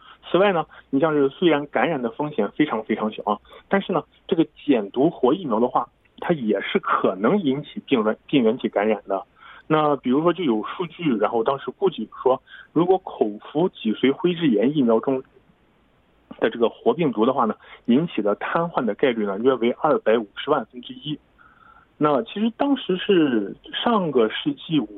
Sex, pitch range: male, 130-205 Hz